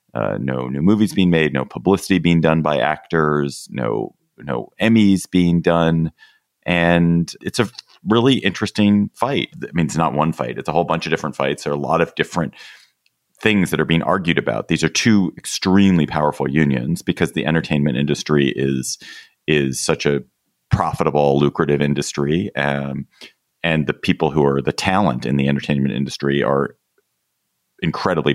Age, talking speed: 30-49, 165 wpm